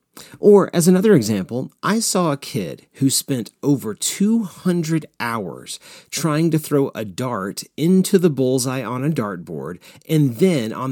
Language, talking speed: English, 150 wpm